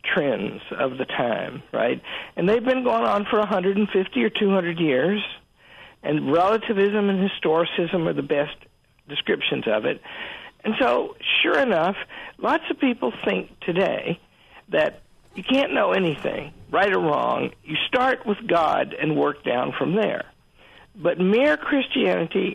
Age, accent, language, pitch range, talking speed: 60-79, American, English, 190-250 Hz, 145 wpm